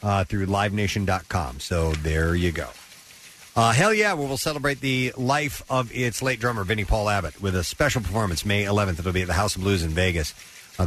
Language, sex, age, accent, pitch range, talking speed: English, male, 50-69, American, 90-120 Hz, 205 wpm